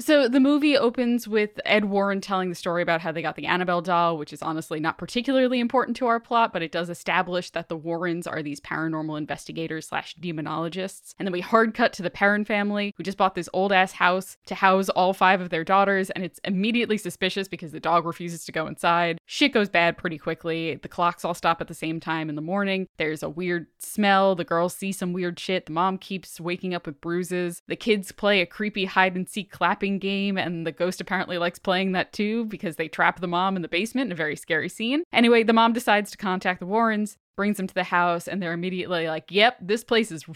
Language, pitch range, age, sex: English, 170-200 Hz, 10-29, female